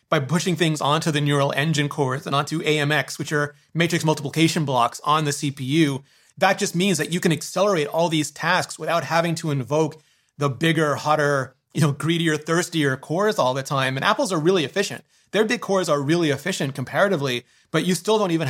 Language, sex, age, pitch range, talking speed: English, male, 30-49, 140-170 Hz, 200 wpm